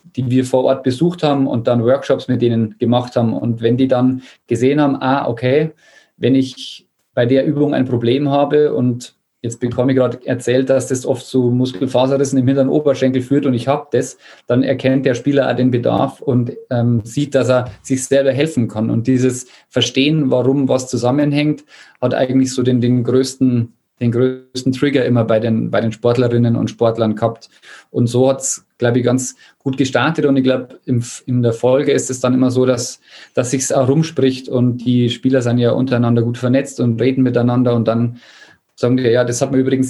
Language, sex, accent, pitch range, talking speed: German, male, German, 120-135 Hz, 200 wpm